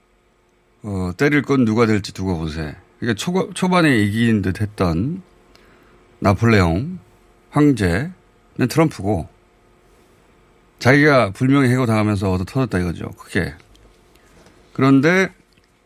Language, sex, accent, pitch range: Korean, male, native, 95-140 Hz